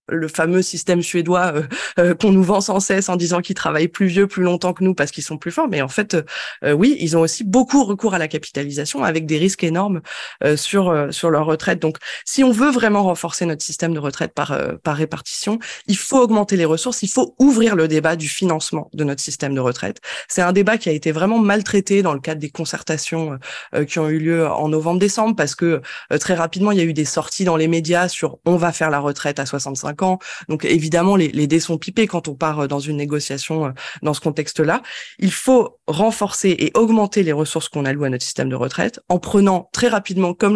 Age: 20-39